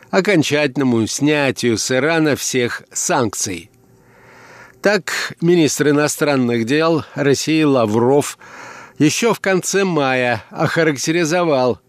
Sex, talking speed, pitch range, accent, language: male, 85 wpm, 125-160 Hz, native, Russian